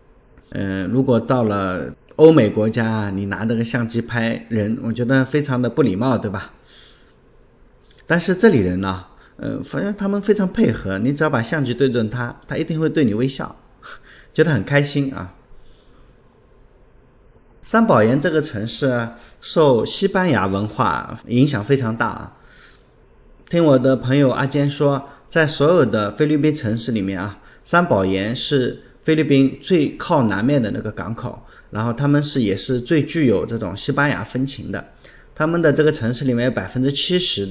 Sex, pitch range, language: male, 110-145 Hz, Chinese